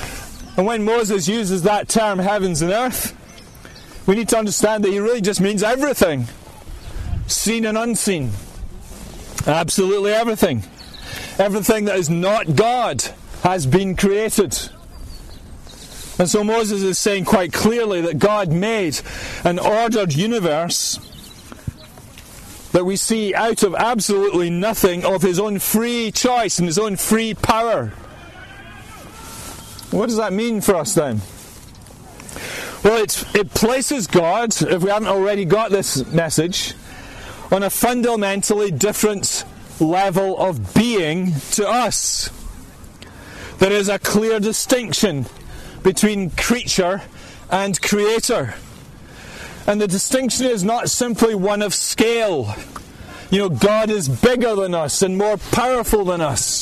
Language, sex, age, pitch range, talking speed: English, male, 40-59, 175-220 Hz, 125 wpm